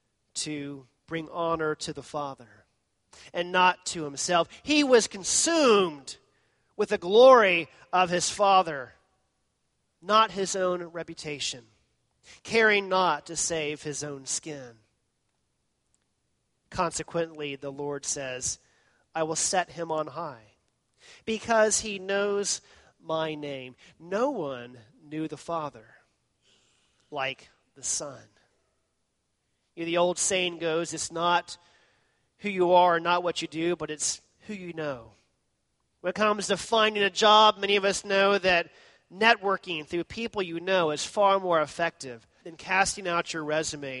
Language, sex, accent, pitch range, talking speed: English, male, American, 145-190 Hz, 135 wpm